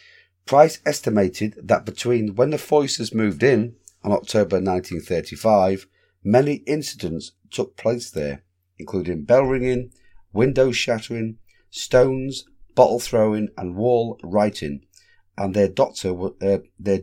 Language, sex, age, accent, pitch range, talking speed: English, male, 40-59, British, 95-125 Hz, 115 wpm